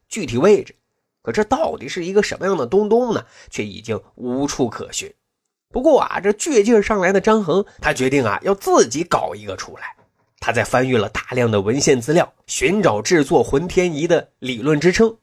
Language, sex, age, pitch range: Chinese, male, 30-49, 135-215 Hz